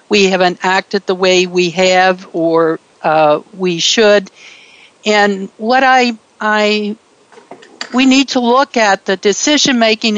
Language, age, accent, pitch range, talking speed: English, 60-79, American, 185-235 Hz, 135 wpm